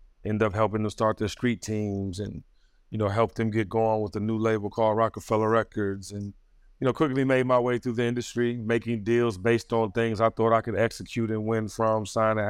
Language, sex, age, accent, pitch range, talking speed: English, male, 30-49, American, 100-115 Hz, 220 wpm